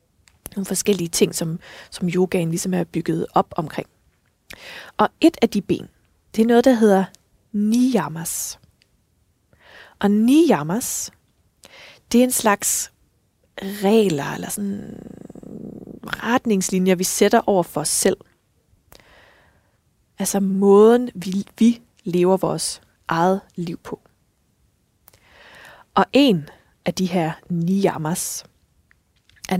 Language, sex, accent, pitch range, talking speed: Danish, female, native, 180-220 Hz, 110 wpm